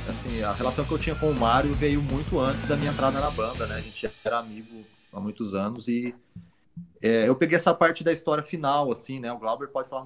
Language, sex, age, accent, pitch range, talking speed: Portuguese, male, 30-49, Brazilian, 105-135 Hz, 245 wpm